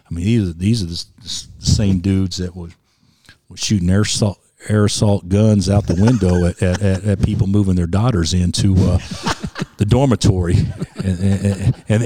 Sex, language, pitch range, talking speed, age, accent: male, English, 95-120 Hz, 175 wpm, 50-69, American